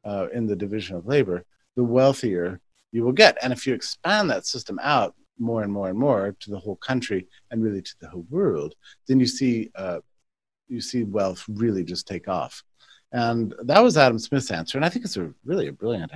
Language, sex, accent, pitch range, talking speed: English, male, American, 95-125 Hz, 215 wpm